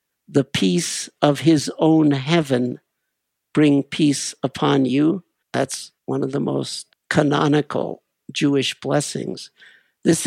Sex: male